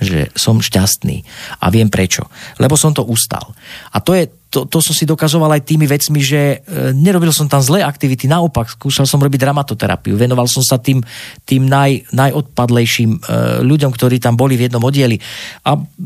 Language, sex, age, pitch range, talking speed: Slovak, male, 40-59, 110-140 Hz, 185 wpm